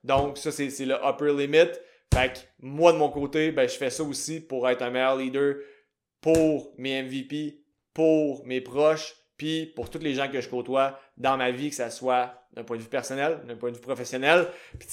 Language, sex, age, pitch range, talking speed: French, male, 20-39, 130-160 Hz, 225 wpm